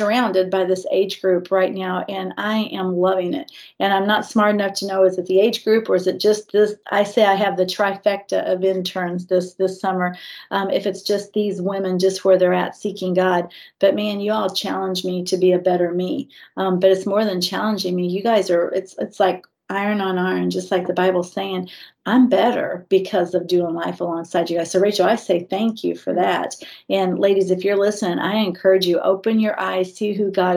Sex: female